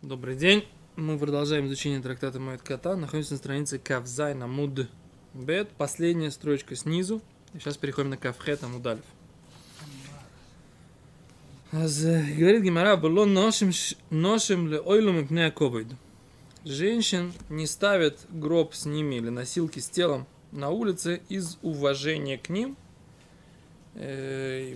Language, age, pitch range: Russian, 20-39, 140-175 Hz